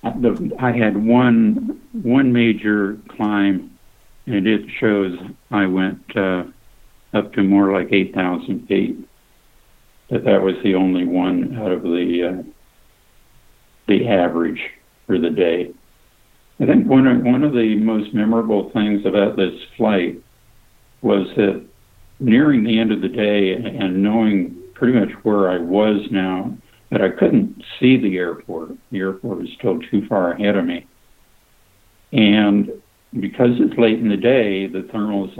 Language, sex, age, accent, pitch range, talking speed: English, male, 60-79, American, 95-110 Hz, 145 wpm